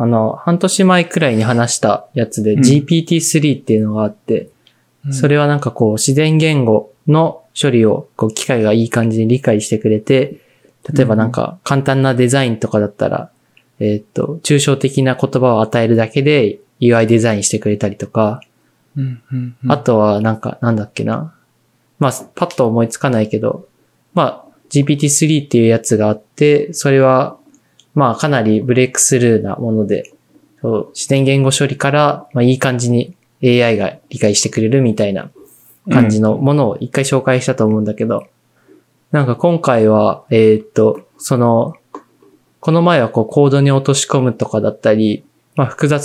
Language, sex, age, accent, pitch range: Japanese, male, 20-39, native, 110-145 Hz